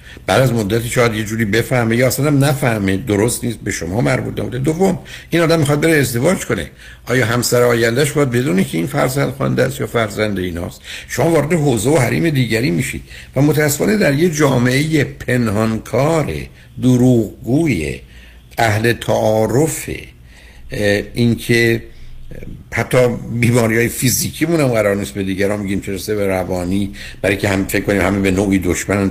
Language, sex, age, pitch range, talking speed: Persian, male, 60-79, 90-125 Hz, 160 wpm